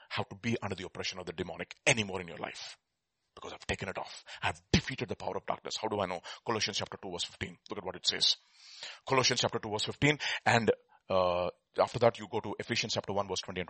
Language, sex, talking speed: English, male, 245 wpm